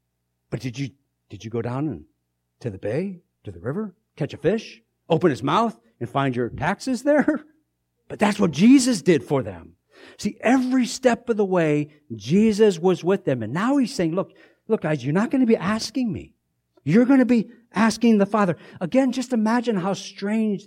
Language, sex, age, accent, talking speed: English, male, 60-79, American, 195 wpm